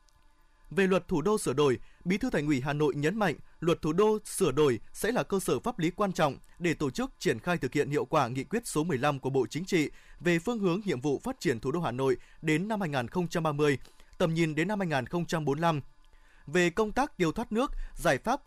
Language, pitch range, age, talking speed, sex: Vietnamese, 145-185 Hz, 20-39, 230 wpm, male